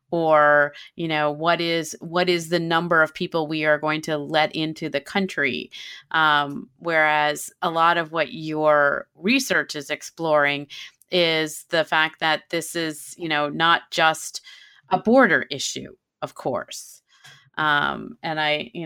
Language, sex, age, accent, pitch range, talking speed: English, female, 30-49, American, 155-190 Hz, 155 wpm